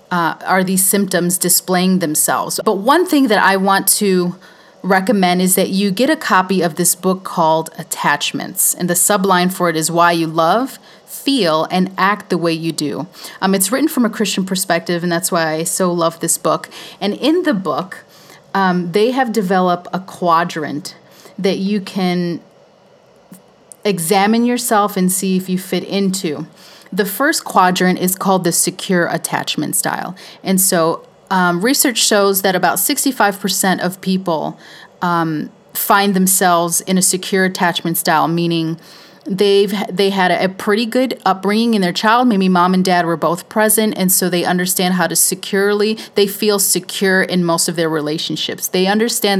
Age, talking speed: 30-49, 170 wpm